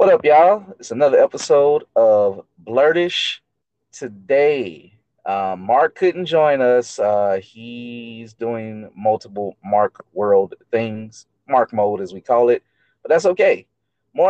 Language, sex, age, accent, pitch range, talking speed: English, male, 30-49, American, 110-160 Hz, 130 wpm